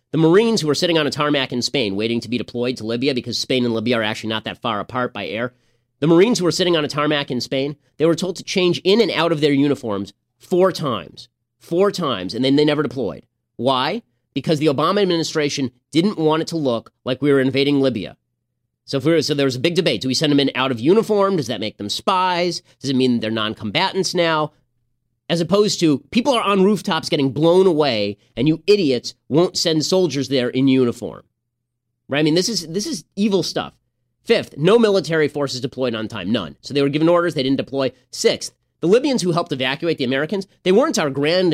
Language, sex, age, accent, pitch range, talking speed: English, male, 30-49, American, 120-170 Hz, 225 wpm